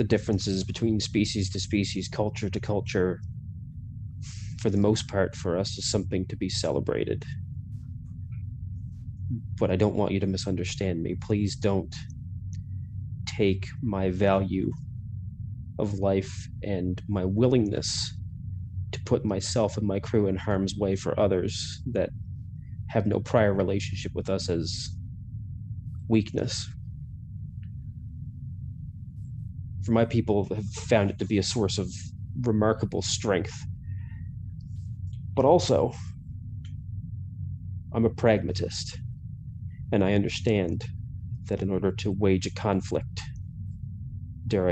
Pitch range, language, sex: 95-115 Hz, English, male